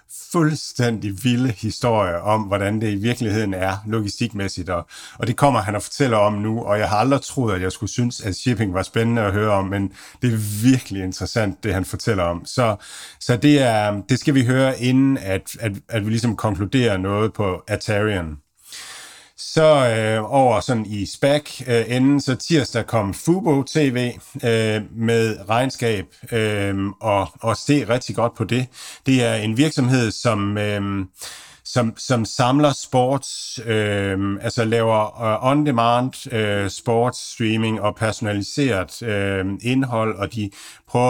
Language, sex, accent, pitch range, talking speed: Danish, male, native, 105-125 Hz, 155 wpm